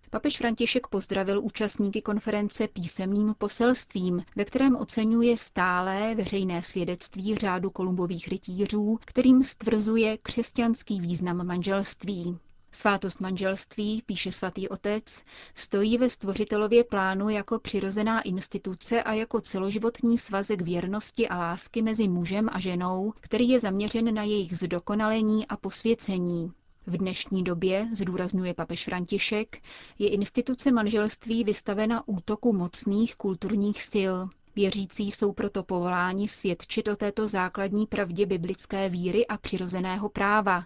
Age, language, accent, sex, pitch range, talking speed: 30-49, Czech, native, female, 185-220 Hz, 120 wpm